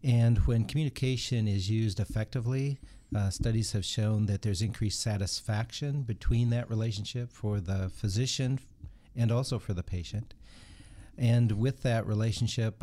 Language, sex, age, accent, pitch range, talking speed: English, male, 50-69, American, 100-120 Hz, 135 wpm